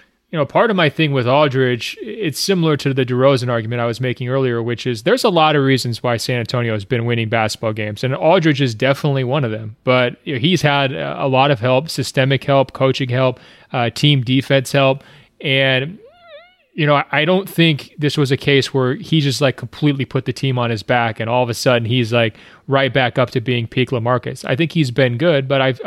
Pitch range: 125-145 Hz